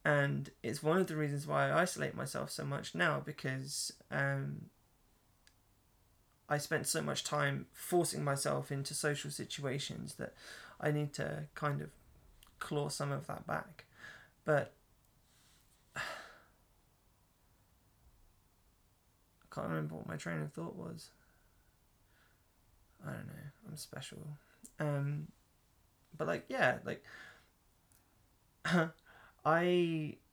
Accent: British